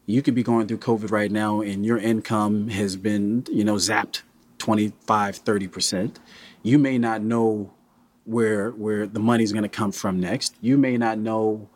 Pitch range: 105-125 Hz